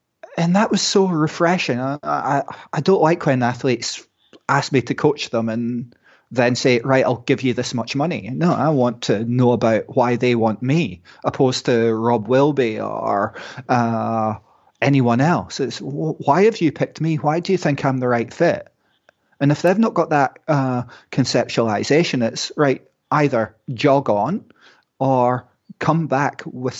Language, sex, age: English, male, 30-49